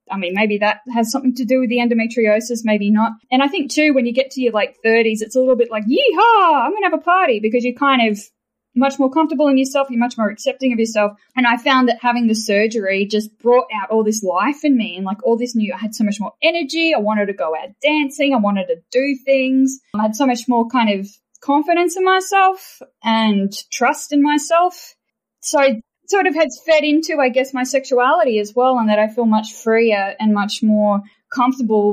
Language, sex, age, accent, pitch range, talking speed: English, female, 10-29, Australian, 210-265 Hz, 235 wpm